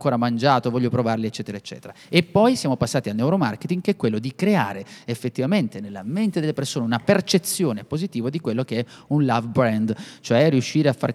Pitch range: 115-170 Hz